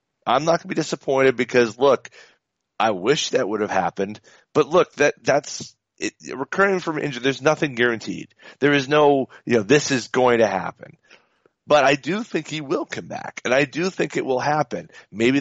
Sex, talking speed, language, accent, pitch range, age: male, 200 wpm, English, American, 110-140 Hz, 40-59